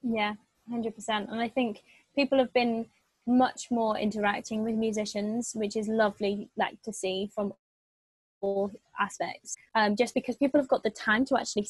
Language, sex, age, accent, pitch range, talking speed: English, female, 20-39, British, 210-240 Hz, 165 wpm